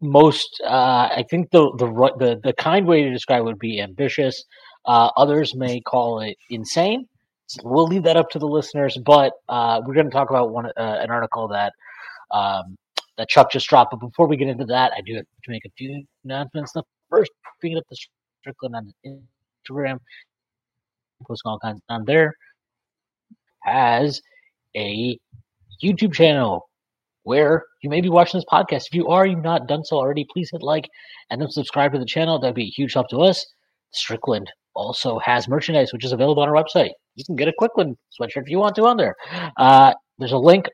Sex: male